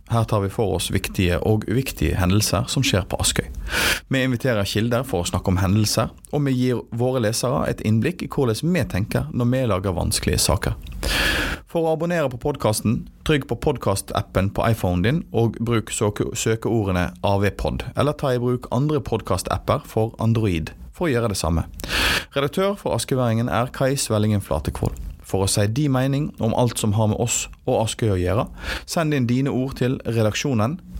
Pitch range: 100-130 Hz